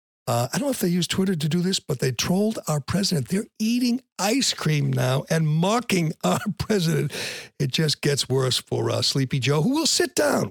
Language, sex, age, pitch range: English, male, 60-79, 125-165 Hz